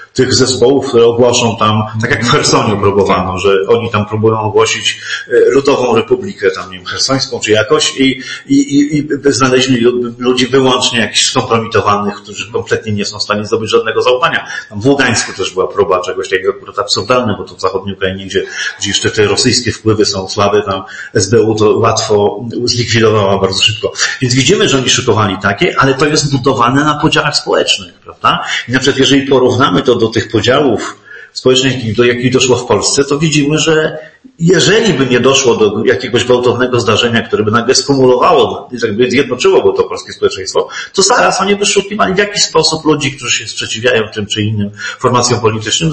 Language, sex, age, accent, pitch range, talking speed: Polish, male, 40-59, native, 115-155 Hz, 180 wpm